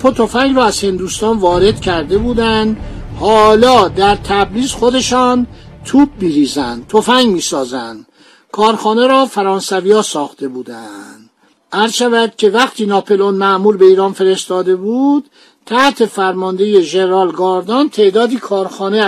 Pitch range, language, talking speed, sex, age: 190-245 Hz, Persian, 120 wpm, male, 60-79